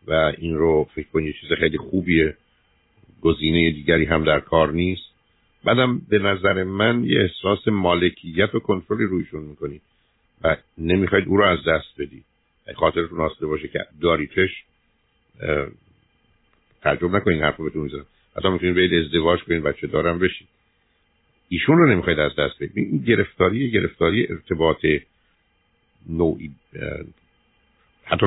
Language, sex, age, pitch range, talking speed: Persian, male, 60-79, 80-100 Hz, 135 wpm